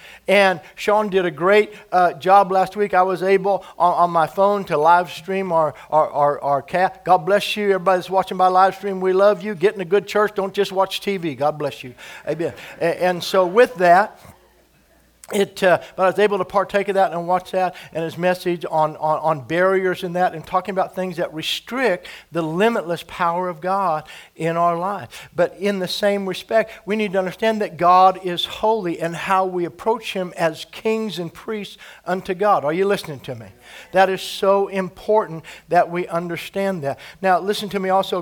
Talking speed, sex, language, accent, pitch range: 205 wpm, male, English, American, 175-200 Hz